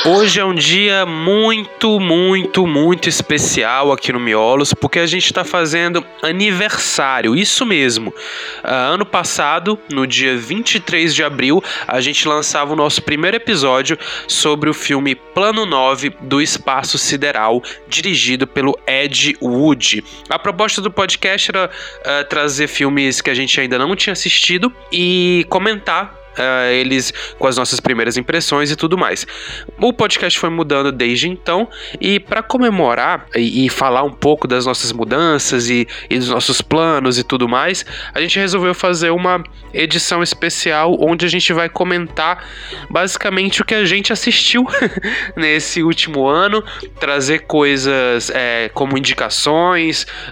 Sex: male